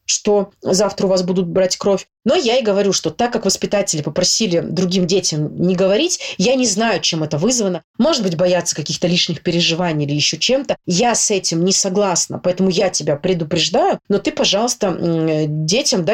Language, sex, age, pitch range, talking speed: Russian, female, 30-49, 180-240 Hz, 180 wpm